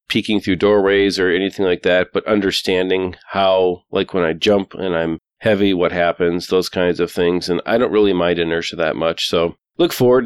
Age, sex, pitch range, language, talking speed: 40-59, male, 90-105 Hz, English, 200 wpm